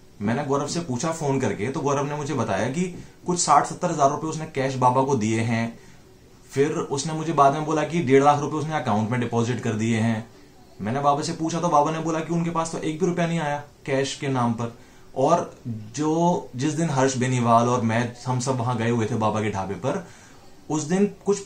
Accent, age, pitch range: native, 30-49, 120-155 Hz